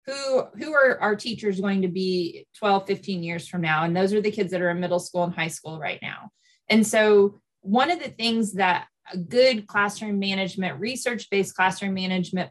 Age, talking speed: 20-39, 200 wpm